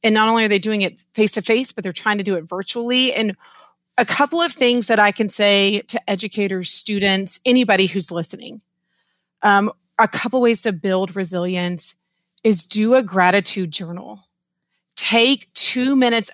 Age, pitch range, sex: 30-49, 190-230 Hz, female